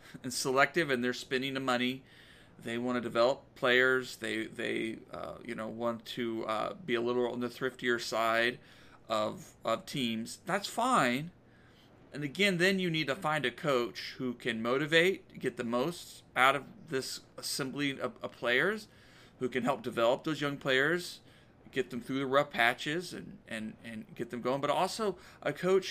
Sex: male